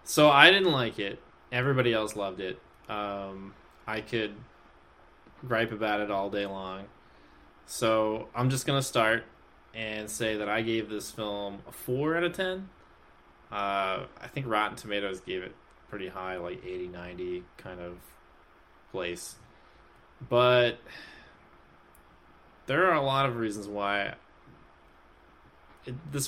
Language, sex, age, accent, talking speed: English, male, 20-39, American, 135 wpm